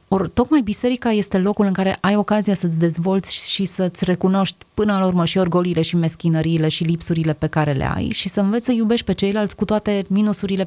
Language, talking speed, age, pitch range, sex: Romanian, 210 wpm, 20-39, 165-195 Hz, female